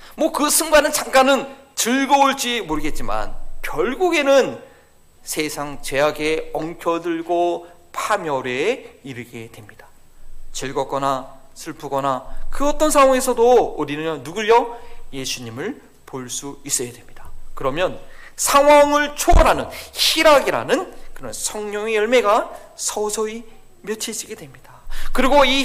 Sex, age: male, 40-59